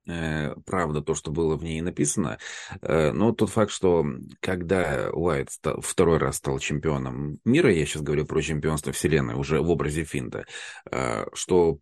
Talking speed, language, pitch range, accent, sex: 145 wpm, Russian, 75-90 Hz, native, male